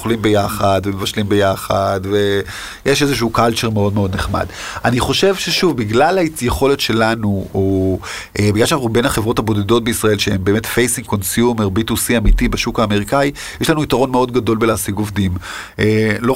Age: 30-49